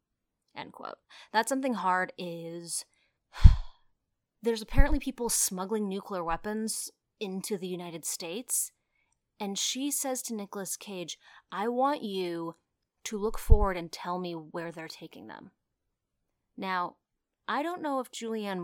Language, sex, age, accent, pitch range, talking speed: English, female, 30-49, American, 170-220 Hz, 130 wpm